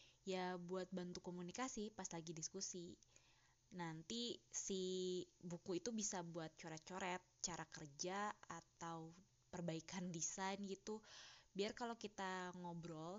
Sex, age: female, 20-39